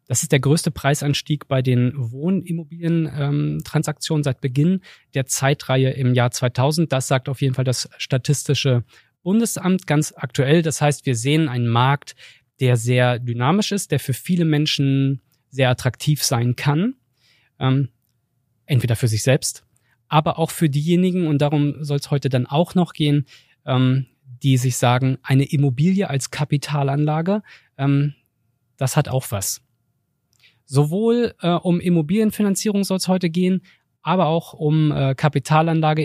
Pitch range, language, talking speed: 130-160 Hz, German, 140 wpm